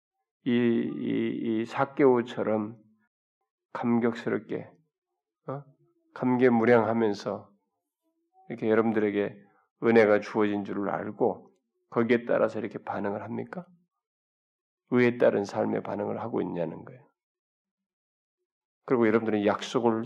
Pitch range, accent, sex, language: 120-175 Hz, native, male, Korean